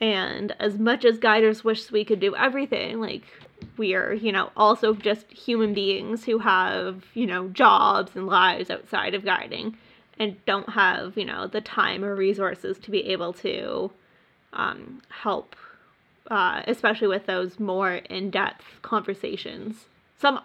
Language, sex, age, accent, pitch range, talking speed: English, female, 10-29, American, 205-235 Hz, 155 wpm